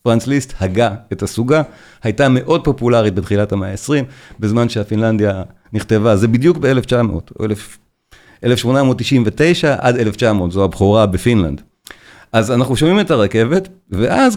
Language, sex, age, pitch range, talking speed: Hebrew, male, 40-59, 105-135 Hz, 120 wpm